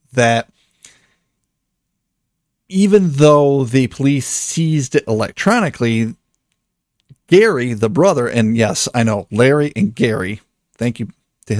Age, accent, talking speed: 40-59, American, 110 wpm